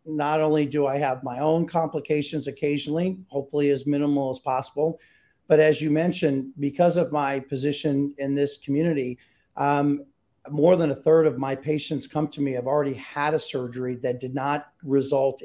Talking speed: 175 wpm